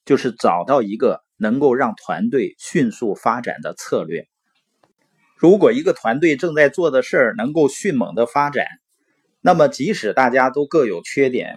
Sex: male